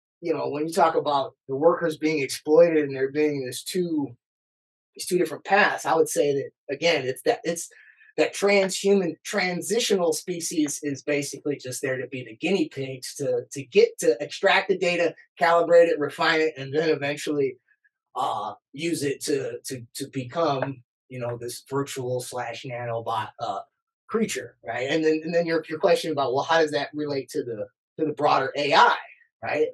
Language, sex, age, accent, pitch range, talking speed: English, male, 20-39, American, 135-185 Hz, 180 wpm